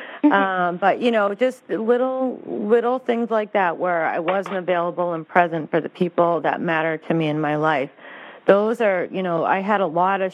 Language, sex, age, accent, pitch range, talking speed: English, female, 40-59, American, 165-200 Hz, 210 wpm